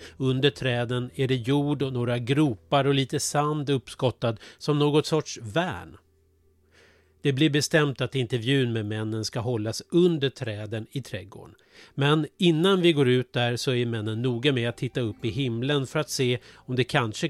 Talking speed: 175 wpm